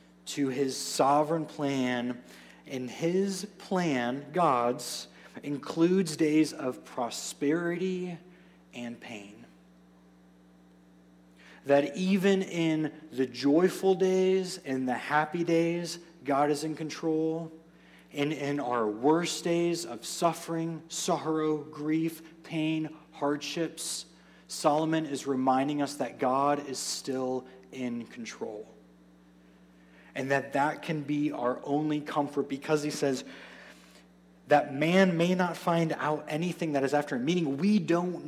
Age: 30-49